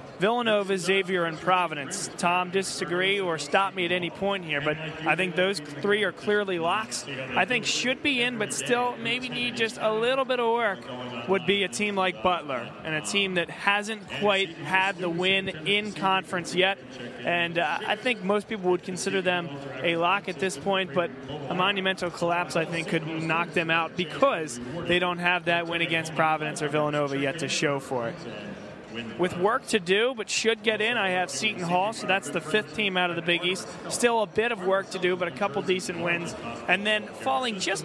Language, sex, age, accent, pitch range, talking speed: English, male, 20-39, American, 165-205 Hz, 210 wpm